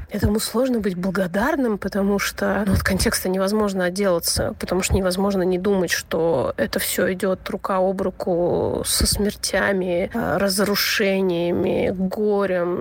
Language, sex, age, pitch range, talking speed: Russian, female, 30-49, 185-215 Hz, 125 wpm